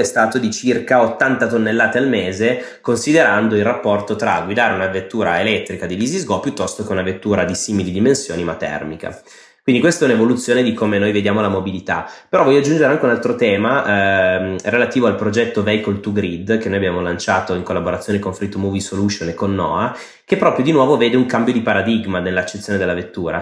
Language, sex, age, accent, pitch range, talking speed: Italian, male, 20-39, native, 95-115 Hz, 195 wpm